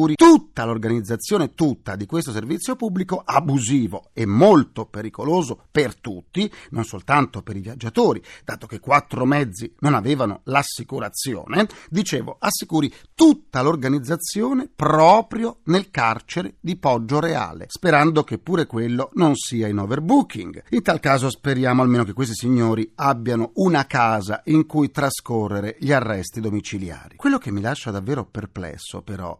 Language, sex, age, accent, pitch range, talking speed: Italian, male, 40-59, native, 120-180 Hz, 135 wpm